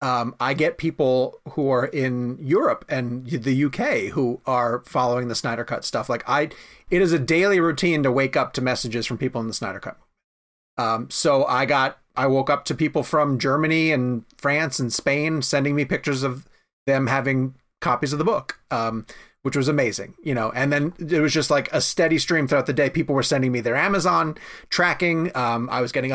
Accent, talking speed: American, 205 wpm